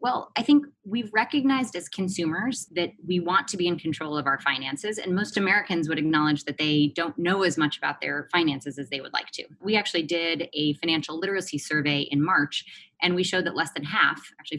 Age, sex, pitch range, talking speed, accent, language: 20-39, female, 150-180 Hz, 220 wpm, American, English